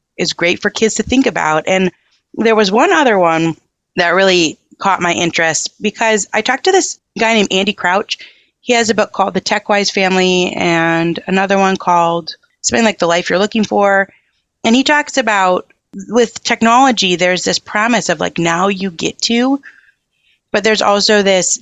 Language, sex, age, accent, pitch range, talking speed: English, female, 30-49, American, 175-225 Hz, 180 wpm